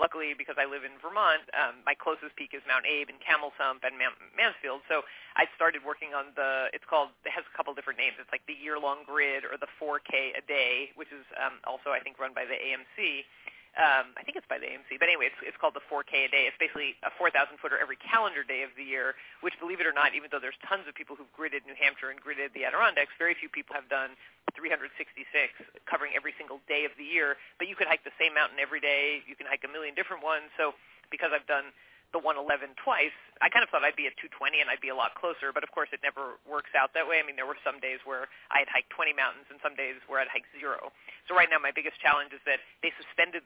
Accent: American